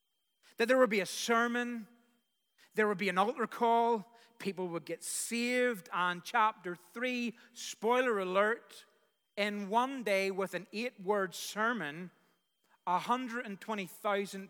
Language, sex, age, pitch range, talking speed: English, male, 40-59, 190-235 Hz, 125 wpm